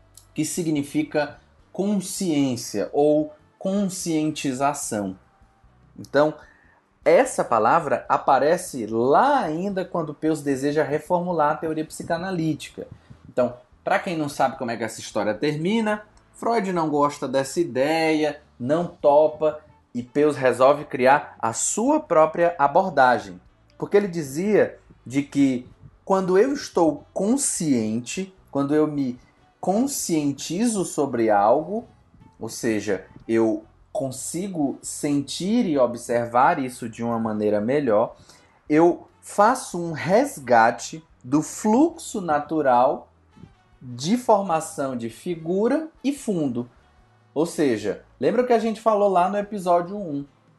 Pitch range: 125-180 Hz